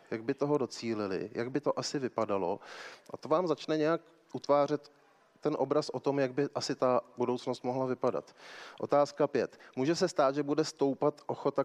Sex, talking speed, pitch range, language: male, 180 wpm, 120-145 Hz, Czech